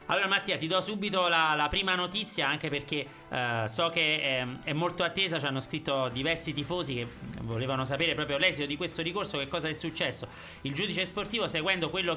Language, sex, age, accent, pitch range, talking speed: Italian, male, 30-49, native, 140-180 Hz, 195 wpm